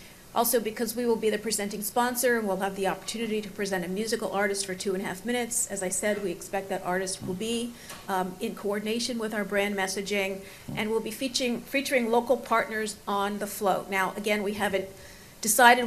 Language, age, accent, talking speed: English, 50-69, American, 210 wpm